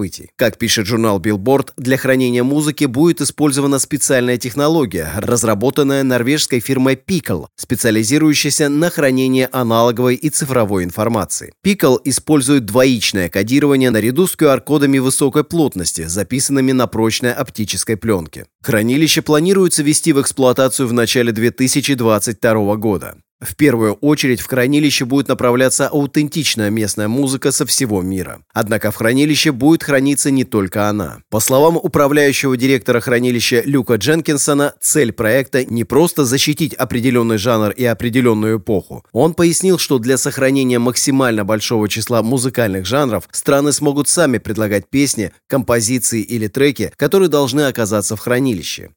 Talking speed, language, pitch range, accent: 130 wpm, Russian, 115-145 Hz, native